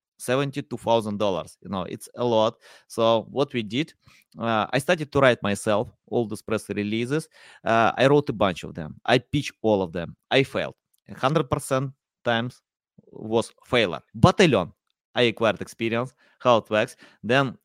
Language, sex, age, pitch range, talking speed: English, male, 20-39, 105-130 Hz, 165 wpm